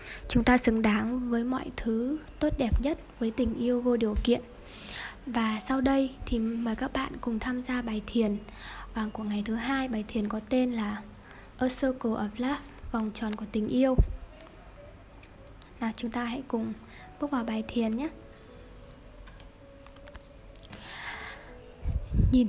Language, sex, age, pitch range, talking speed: Vietnamese, female, 10-29, 205-255 Hz, 155 wpm